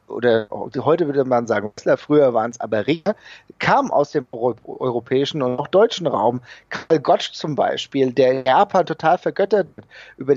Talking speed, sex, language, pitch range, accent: 160 wpm, male, German, 130-165 Hz, German